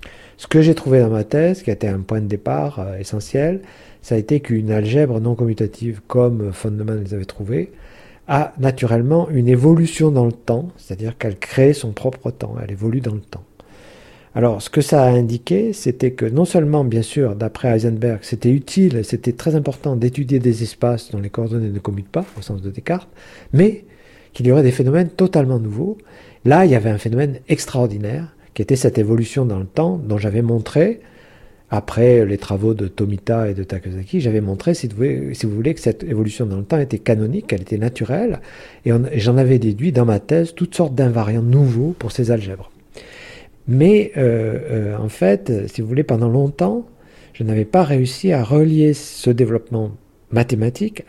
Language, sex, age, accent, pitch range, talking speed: French, male, 50-69, French, 110-145 Hz, 190 wpm